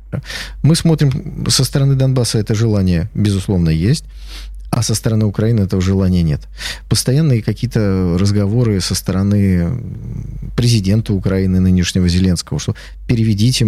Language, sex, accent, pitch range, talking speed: Russian, male, native, 95-125 Hz, 120 wpm